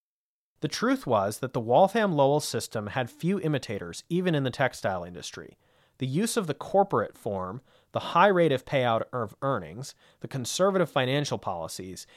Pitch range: 115-155 Hz